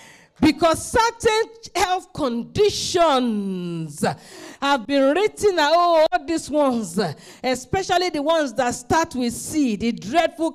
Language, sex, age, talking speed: English, female, 40-59, 115 wpm